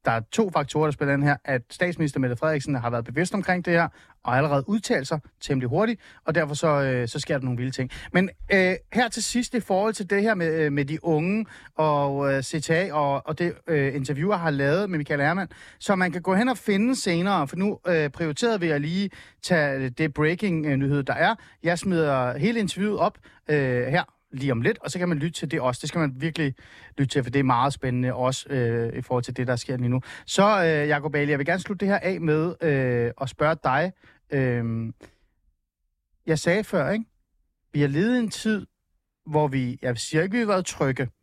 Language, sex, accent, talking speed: Danish, male, native, 220 wpm